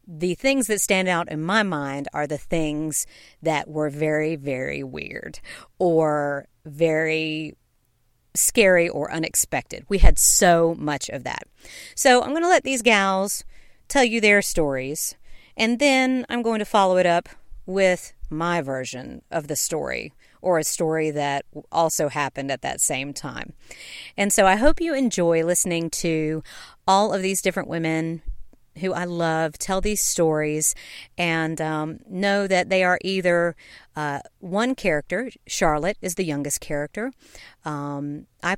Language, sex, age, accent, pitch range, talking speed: English, female, 40-59, American, 150-195 Hz, 150 wpm